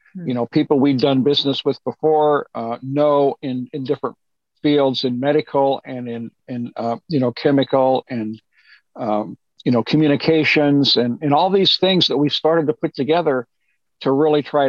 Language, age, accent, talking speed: English, 50-69, American, 170 wpm